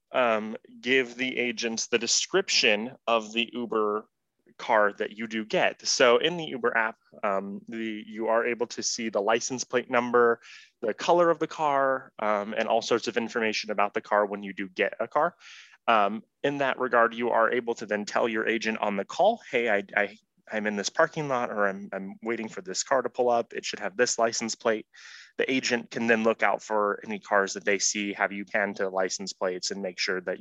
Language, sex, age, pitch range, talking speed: English, male, 20-39, 105-130 Hz, 220 wpm